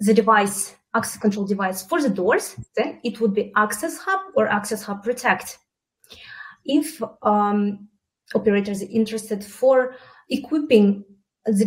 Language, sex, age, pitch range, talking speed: English, female, 20-39, 205-245 Hz, 135 wpm